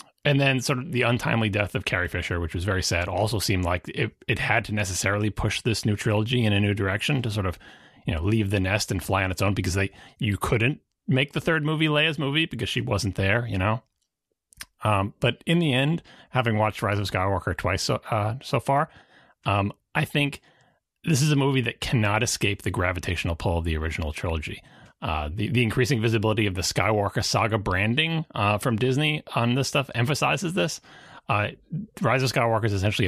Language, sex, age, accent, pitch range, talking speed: English, male, 30-49, American, 95-130 Hz, 210 wpm